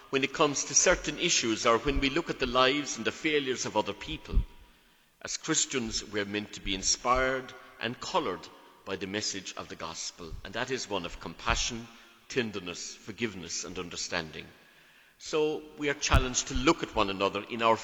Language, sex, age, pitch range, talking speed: English, male, 60-79, 95-130 Hz, 190 wpm